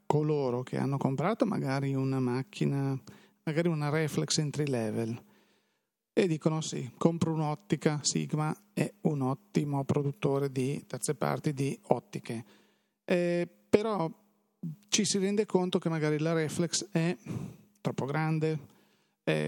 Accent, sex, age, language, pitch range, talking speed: native, male, 40-59, Italian, 135-170 Hz, 125 wpm